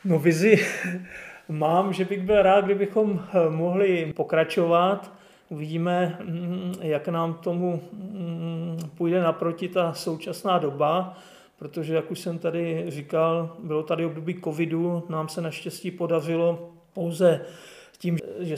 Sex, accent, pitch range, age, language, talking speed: male, native, 165-180 Hz, 40-59, Czech, 115 wpm